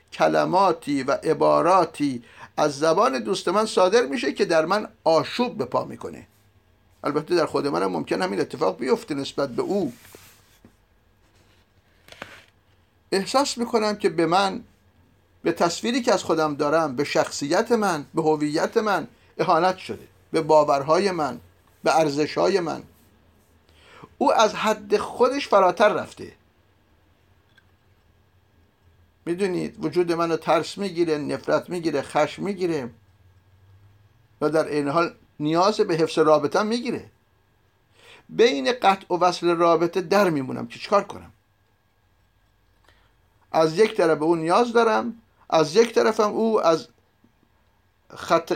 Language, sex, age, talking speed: Persian, male, 50-69, 120 wpm